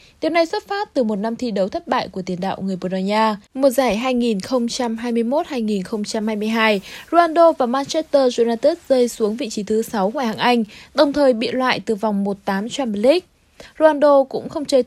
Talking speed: 190 wpm